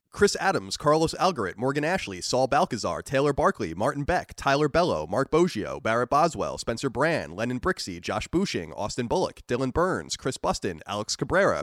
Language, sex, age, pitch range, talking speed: English, male, 30-49, 125-175 Hz, 165 wpm